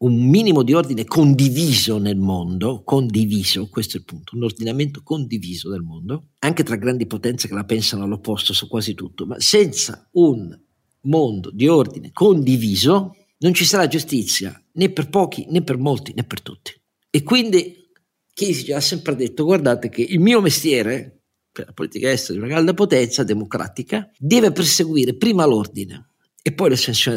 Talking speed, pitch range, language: 170 wpm, 105-165 Hz, Italian